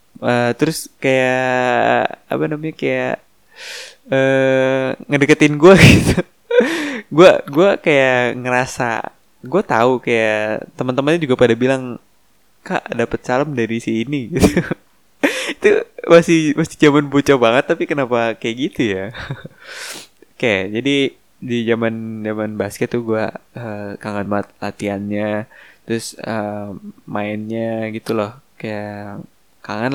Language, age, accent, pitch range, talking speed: Indonesian, 20-39, native, 115-145 Hz, 115 wpm